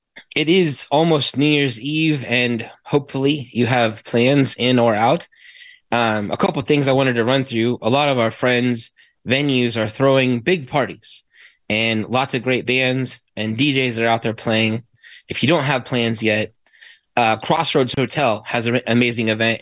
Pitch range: 110-135 Hz